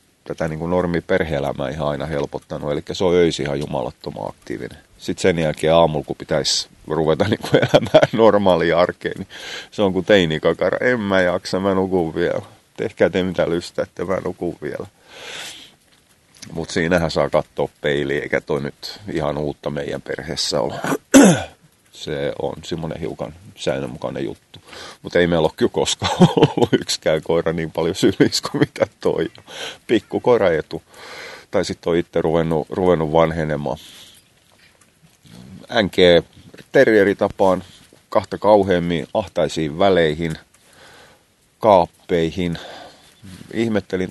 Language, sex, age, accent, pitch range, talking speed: Finnish, male, 30-49, native, 75-90 Hz, 125 wpm